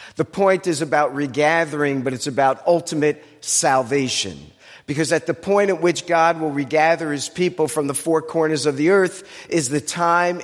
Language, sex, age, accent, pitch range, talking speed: English, male, 50-69, American, 140-170 Hz, 180 wpm